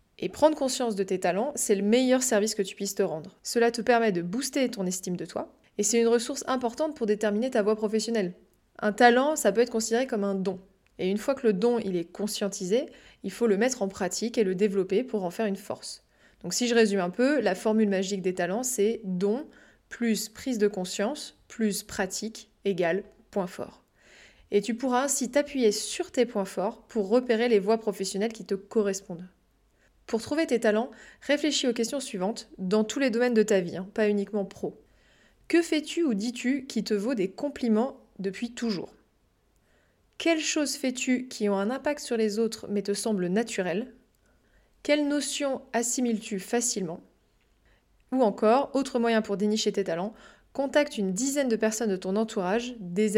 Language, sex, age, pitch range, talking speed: French, female, 20-39, 200-245 Hz, 190 wpm